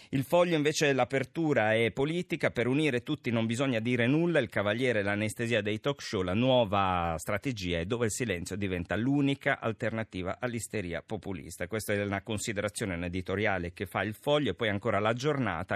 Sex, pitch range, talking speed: male, 100-130 Hz, 175 wpm